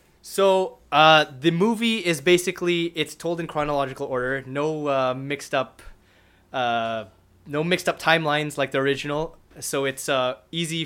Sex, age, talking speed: male, 20-39, 150 wpm